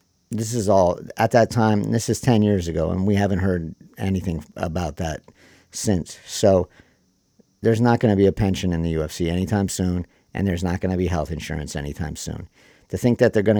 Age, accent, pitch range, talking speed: 50-69, American, 90-105 Hz, 210 wpm